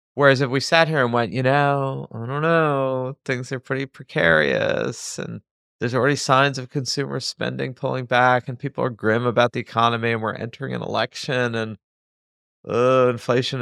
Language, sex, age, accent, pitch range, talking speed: English, male, 30-49, American, 100-130 Hz, 175 wpm